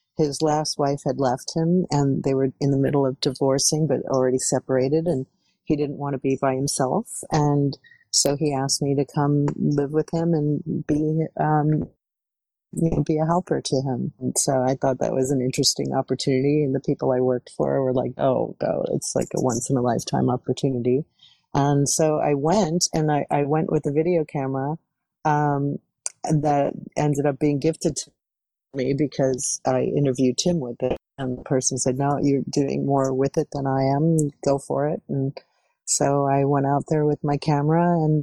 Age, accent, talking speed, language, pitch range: 40-59, American, 190 wpm, English, 135-155 Hz